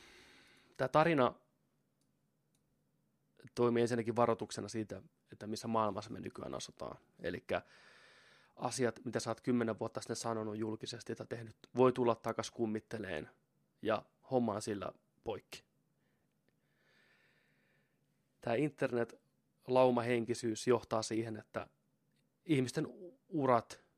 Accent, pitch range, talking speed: native, 105-125 Hz, 100 wpm